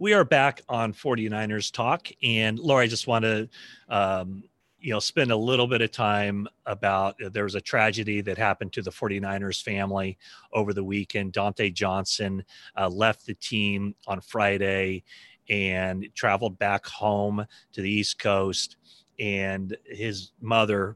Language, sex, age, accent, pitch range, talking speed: English, male, 30-49, American, 95-105 Hz, 155 wpm